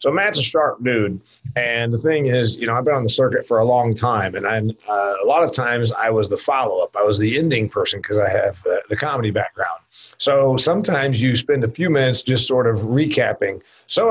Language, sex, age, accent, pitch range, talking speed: English, male, 40-59, American, 115-150 Hz, 235 wpm